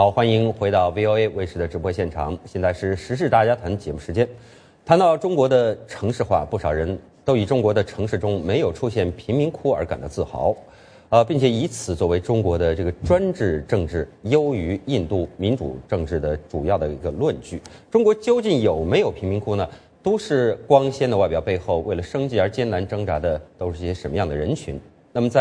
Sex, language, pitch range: male, English, 90-125 Hz